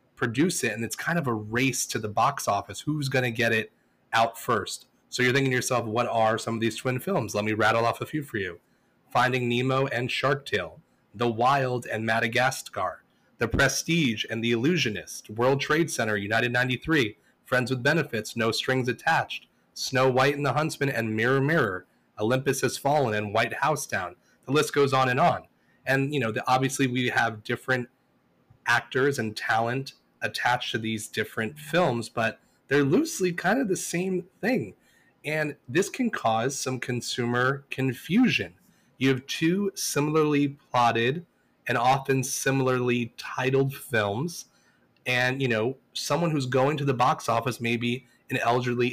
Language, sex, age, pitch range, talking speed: English, male, 30-49, 115-140 Hz, 170 wpm